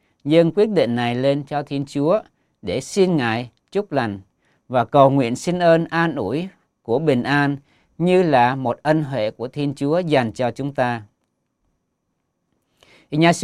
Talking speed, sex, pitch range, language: 160 wpm, male, 125-170 Hz, Vietnamese